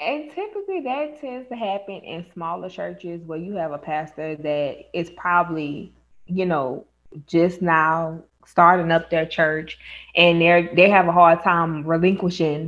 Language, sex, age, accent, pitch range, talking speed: English, female, 20-39, American, 160-190 Hz, 155 wpm